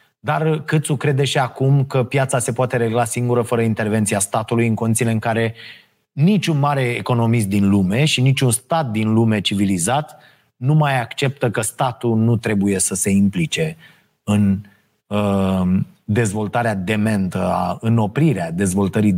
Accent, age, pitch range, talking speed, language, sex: native, 30-49, 110-150 Hz, 145 wpm, Romanian, male